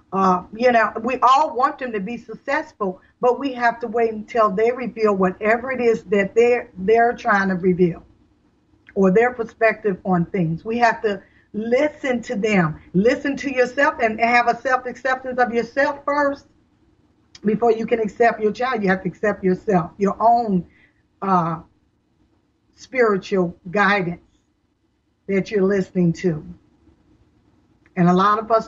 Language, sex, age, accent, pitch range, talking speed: English, female, 50-69, American, 205-255 Hz, 155 wpm